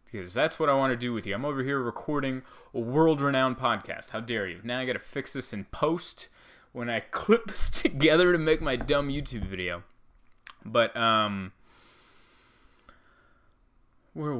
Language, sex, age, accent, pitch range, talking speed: English, male, 20-39, American, 110-150 Hz, 165 wpm